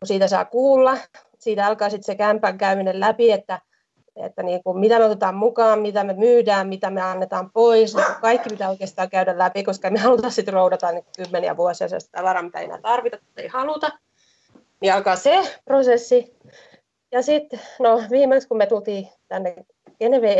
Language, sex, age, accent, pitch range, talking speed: Finnish, female, 30-49, native, 195-305 Hz, 180 wpm